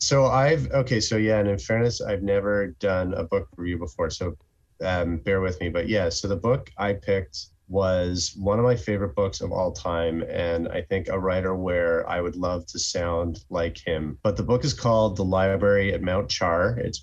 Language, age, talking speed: English, 30-49, 210 wpm